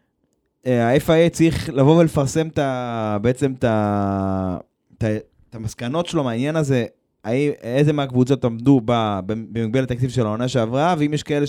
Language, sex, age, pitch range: Hebrew, male, 20-39, 125-165 Hz